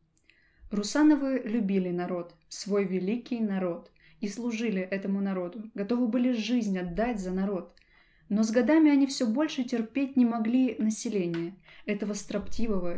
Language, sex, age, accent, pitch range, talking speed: Russian, female, 20-39, native, 200-240 Hz, 130 wpm